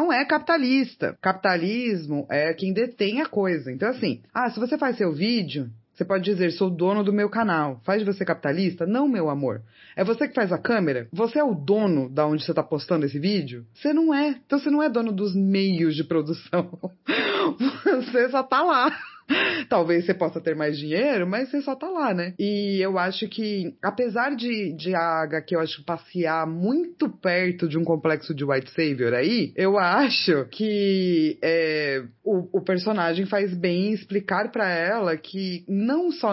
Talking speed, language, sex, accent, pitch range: 185 wpm, Portuguese, female, Brazilian, 155-230 Hz